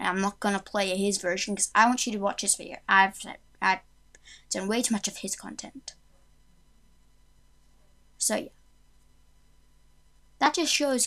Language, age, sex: English, 10-29, female